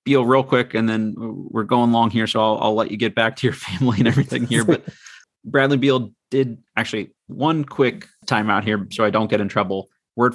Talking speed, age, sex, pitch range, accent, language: 220 wpm, 30-49, male, 105-130 Hz, American, English